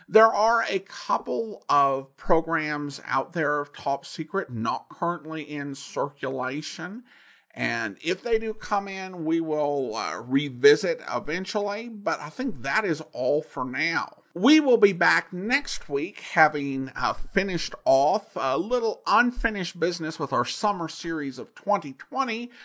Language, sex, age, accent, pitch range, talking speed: English, male, 50-69, American, 150-220 Hz, 140 wpm